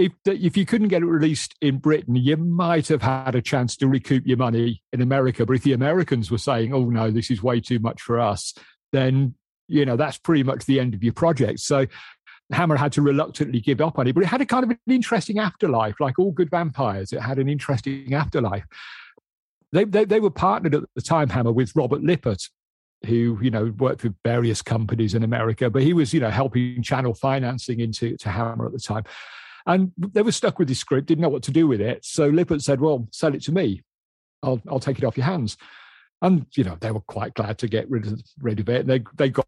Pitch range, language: 115-155 Hz, English